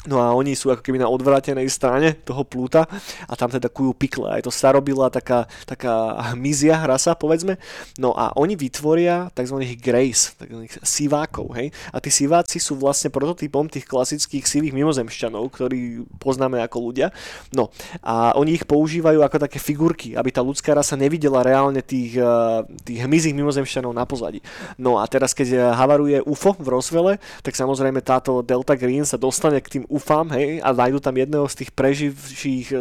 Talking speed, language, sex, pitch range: 170 wpm, Slovak, male, 125-150 Hz